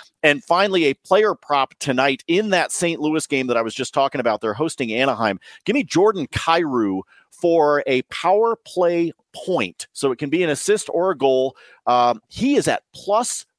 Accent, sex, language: American, male, English